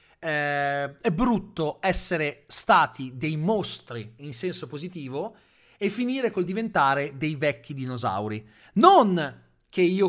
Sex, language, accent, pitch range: male, Italian, native, 130-200 Hz